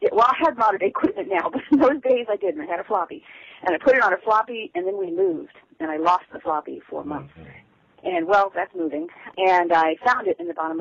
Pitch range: 155-190 Hz